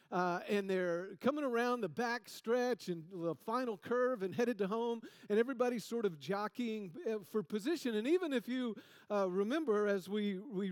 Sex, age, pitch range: male, 50-69, 200-265 Hz